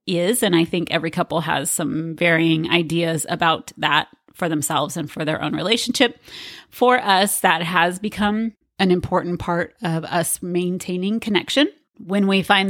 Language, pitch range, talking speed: English, 170-205 Hz, 160 wpm